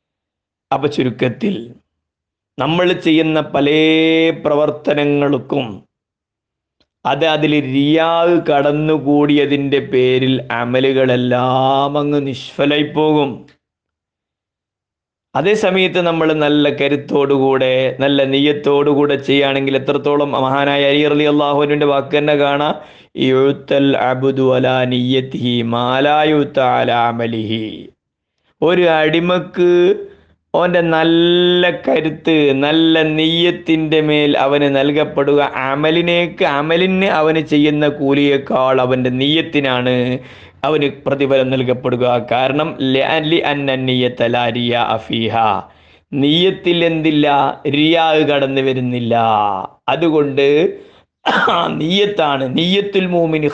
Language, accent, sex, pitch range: Malayalam, native, male, 130-155 Hz